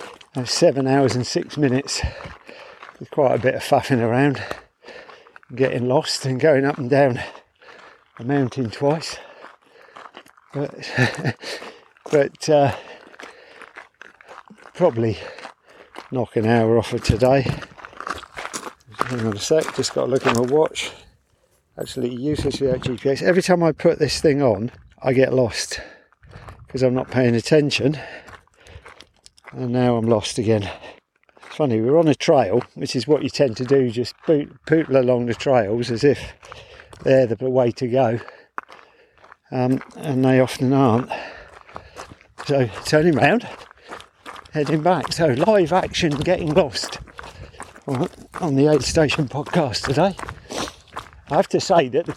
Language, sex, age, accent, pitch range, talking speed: English, male, 50-69, British, 125-155 Hz, 135 wpm